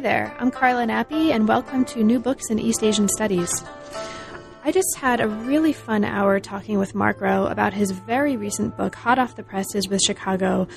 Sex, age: female, 20-39